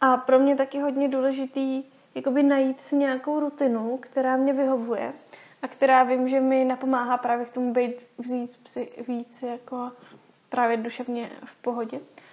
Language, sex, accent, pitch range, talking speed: Czech, female, native, 240-260 Hz, 145 wpm